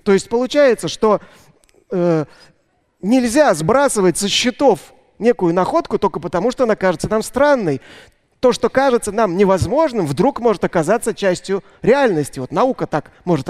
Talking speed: 140 wpm